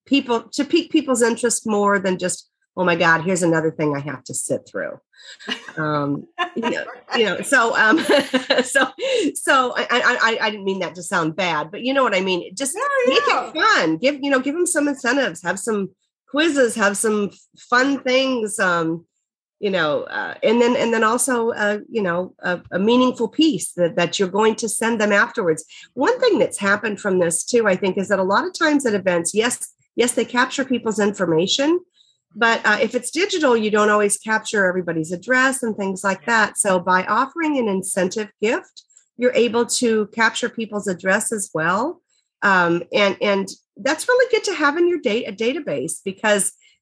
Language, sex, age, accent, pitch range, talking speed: English, female, 40-59, American, 190-270 Hz, 195 wpm